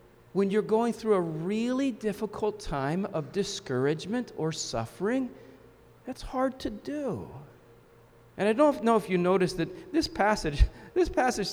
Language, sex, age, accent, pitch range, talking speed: English, male, 40-59, American, 170-215 Hz, 145 wpm